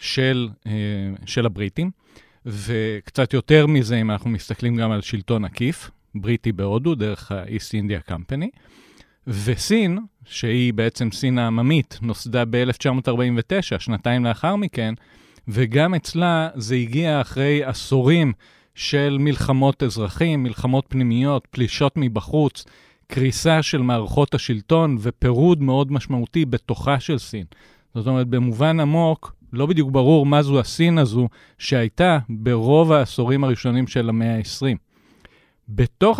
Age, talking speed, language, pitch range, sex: 40-59, 120 wpm, Hebrew, 115-150 Hz, male